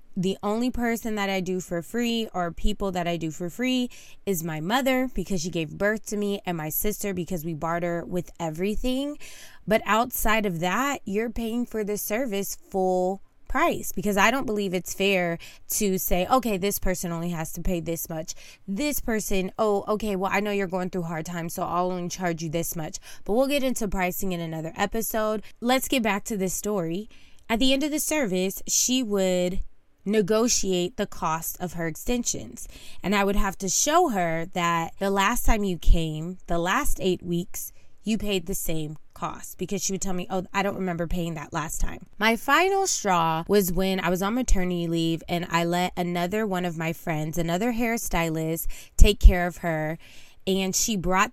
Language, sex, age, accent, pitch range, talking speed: English, female, 20-39, American, 175-215 Hz, 200 wpm